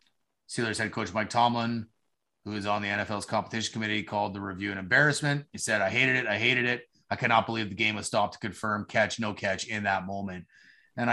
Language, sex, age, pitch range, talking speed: English, male, 30-49, 100-120 Hz, 220 wpm